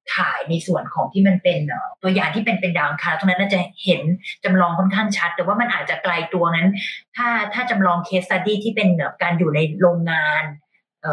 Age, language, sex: 20-39, Thai, female